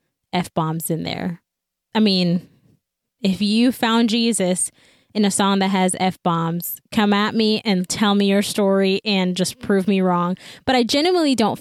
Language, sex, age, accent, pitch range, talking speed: English, female, 10-29, American, 175-210 Hz, 165 wpm